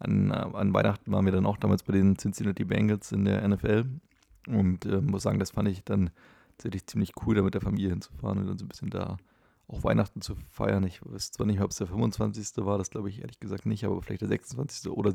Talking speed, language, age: 245 wpm, German, 30-49